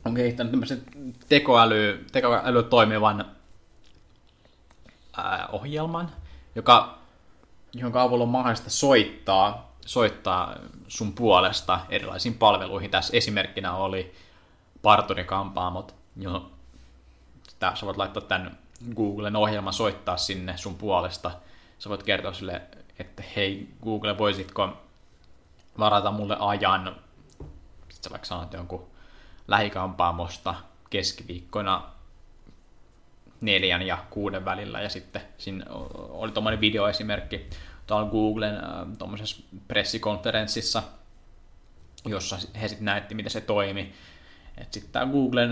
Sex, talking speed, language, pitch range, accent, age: male, 100 wpm, Finnish, 90-110 Hz, native, 20-39